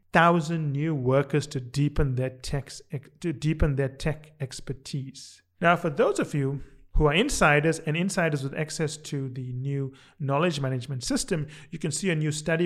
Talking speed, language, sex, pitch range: 170 wpm, English, male, 140-180 Hz